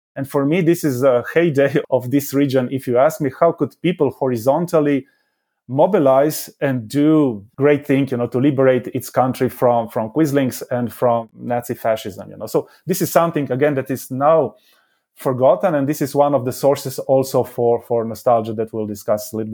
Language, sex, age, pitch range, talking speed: English, male, 30-49, 120-145 Hz, 195 wpm